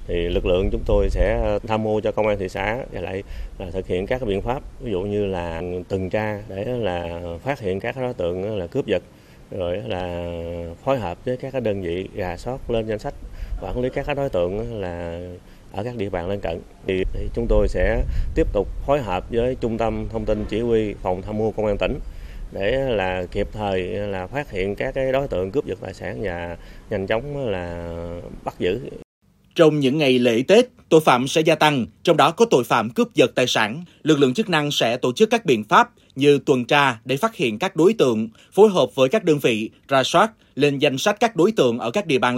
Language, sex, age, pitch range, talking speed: Vietnamese, male, 20-39, 95-145 Hz, 230 wpm